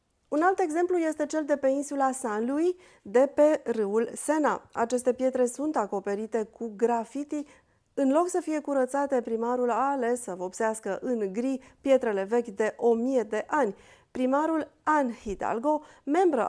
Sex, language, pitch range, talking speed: female, Romanian, 220-285 Hz, 150 wpm